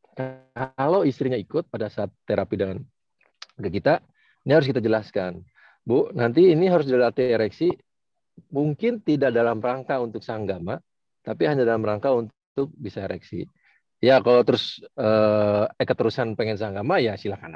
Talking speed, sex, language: 140 wpm, male, Indonesian